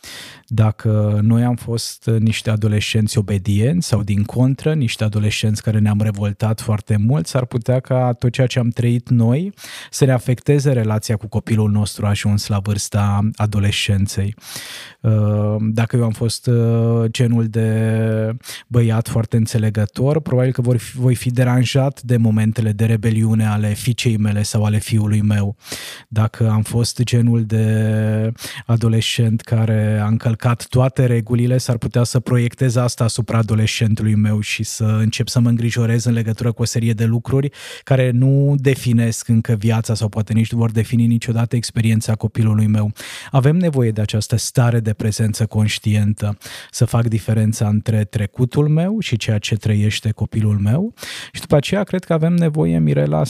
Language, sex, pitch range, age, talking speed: Romanian, male, 110-125 Hz, 20-39, 155 wpm